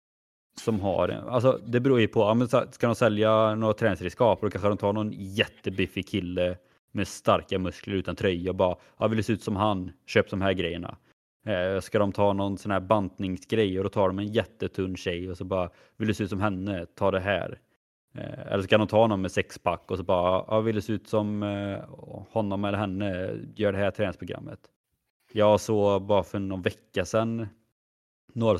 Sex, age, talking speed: male, 20-39, 200 wpm